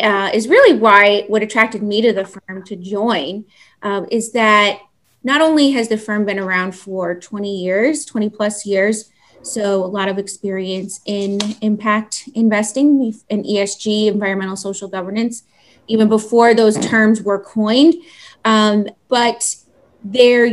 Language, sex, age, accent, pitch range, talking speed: English, female, 20-39, American, 205-235 Hz, 145 wpm